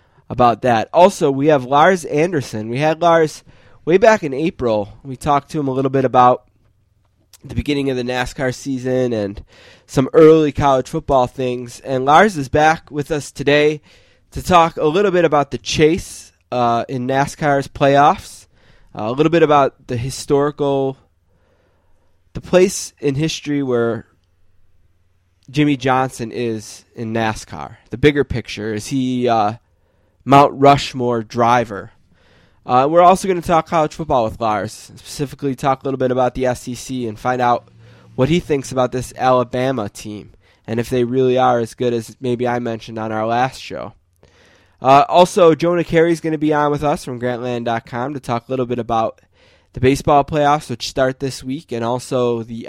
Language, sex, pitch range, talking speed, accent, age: English, male, 115-145 Hz, 170 wpm, American, 20-39